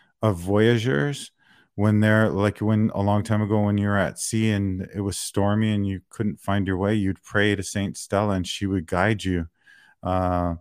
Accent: American